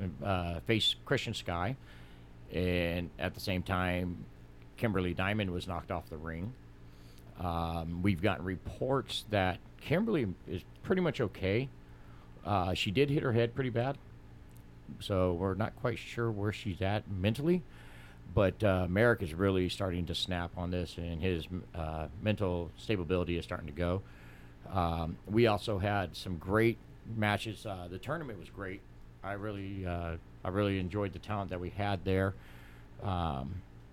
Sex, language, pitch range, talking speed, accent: male, English, 85-110 Hz, 155 wpm, American